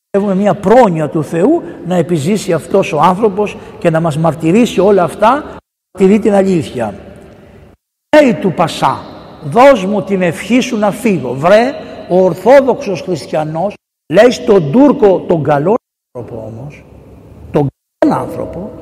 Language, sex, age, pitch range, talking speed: Greek, male, 60-79, 155-225 Hz, 135 wpm